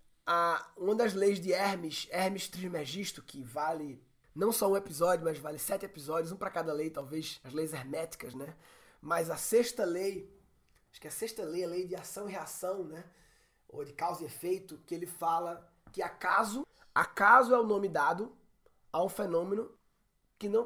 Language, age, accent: Portuguese, 20-39, Brazilian